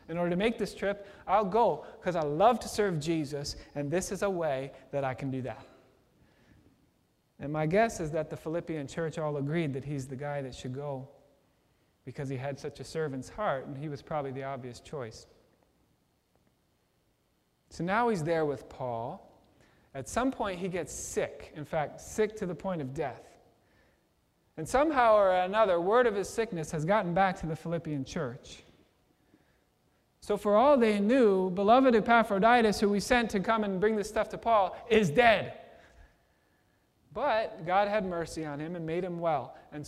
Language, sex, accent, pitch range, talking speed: English, male, American, 150-210 Hz, 180 wpm